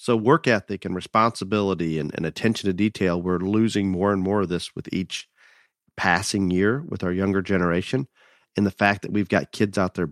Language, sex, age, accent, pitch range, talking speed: English, male, 40-59, American, 95-115 Hz, 200 wpm